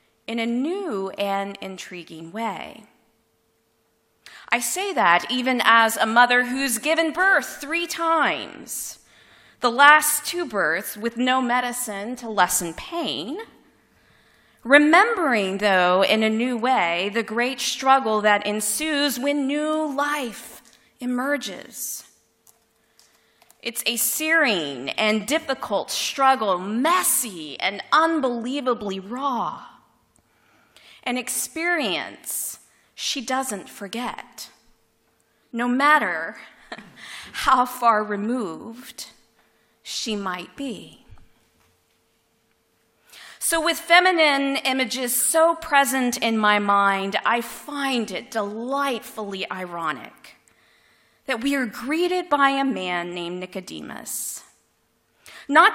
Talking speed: 95 wpm